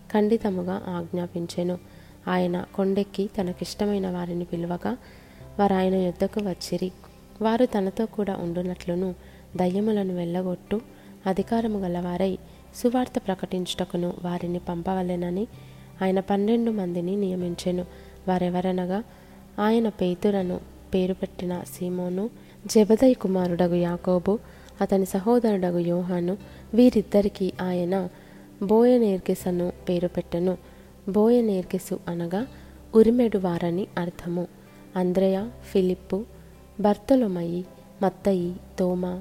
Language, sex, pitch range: Telugu, female, 175-200 Hz